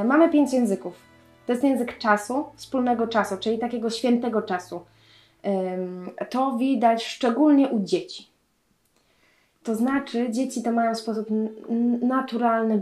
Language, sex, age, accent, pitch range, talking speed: Polish, female, 20-39, native, 220-260 Hz, 115 wpm